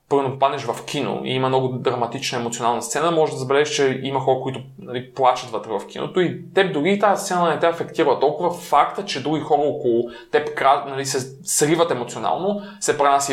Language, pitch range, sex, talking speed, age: Bulgarian, 125-155 Hz, male, 190 wpm, 20-39